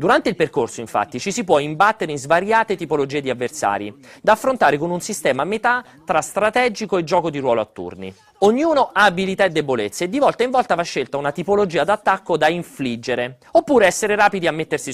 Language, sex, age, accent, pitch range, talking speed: Italian, male, 30-49, native, 140-220 Hz, 200 wpm